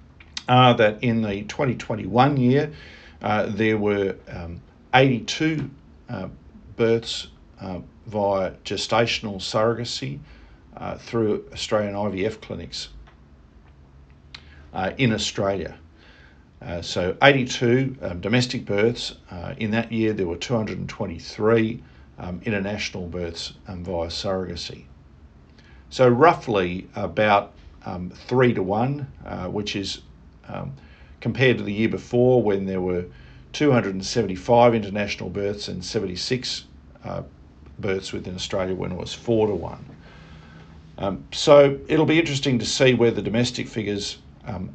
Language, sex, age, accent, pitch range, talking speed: English, male, 50-69, Australian, 85-120 Hz, 120 wpm